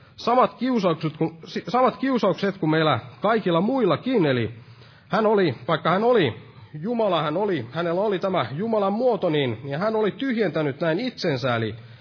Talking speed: 140 wpm